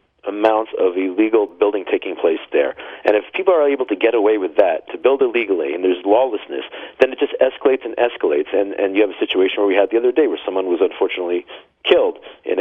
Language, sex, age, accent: English, male, 40-59, American